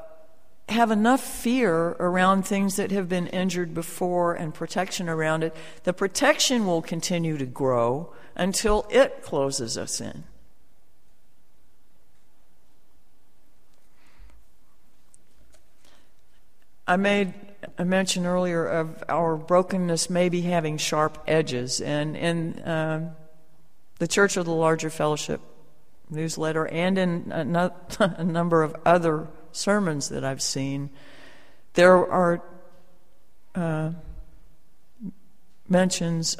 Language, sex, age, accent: English, female, 60-79, American